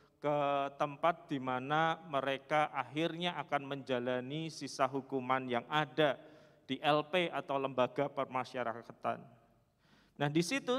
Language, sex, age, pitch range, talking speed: Malay, male, 40-59, 140-200 Hz, 110 wpm